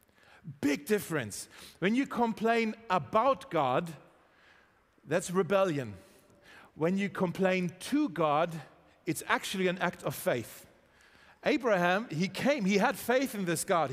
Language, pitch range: German, 155-210 Hz